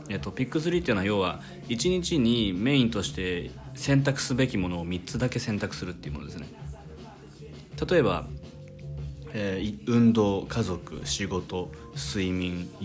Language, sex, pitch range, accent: Japanese, male, 85-110 Hz, native